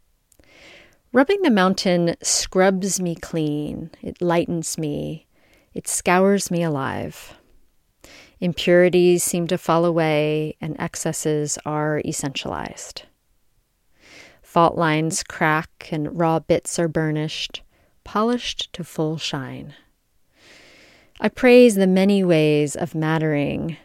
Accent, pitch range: American, 155-185 Hz